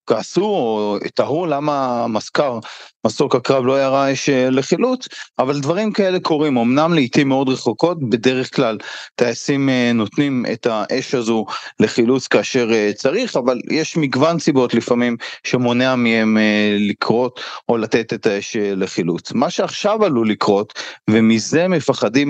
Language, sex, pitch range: Hebrew, male, 120-150 Hz